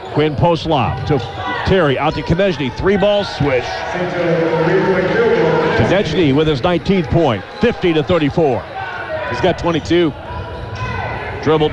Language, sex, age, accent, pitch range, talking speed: English, male, 50-69, American, 140-175 Hz, 115 wpm